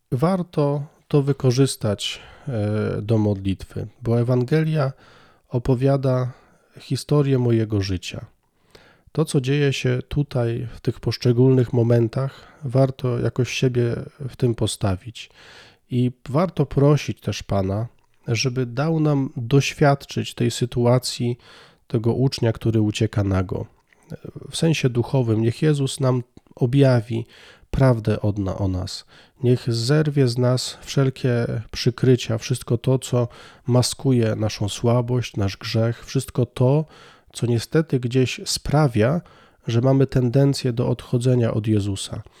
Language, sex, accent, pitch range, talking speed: Polish, male, native, 115-140 Hz, 115 wpm